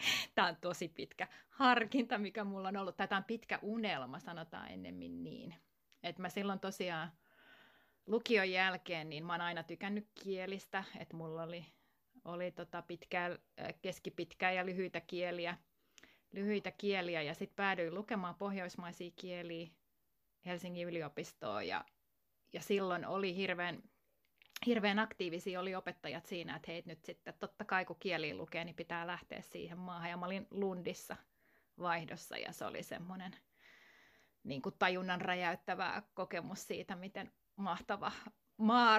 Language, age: Finnish, 30-49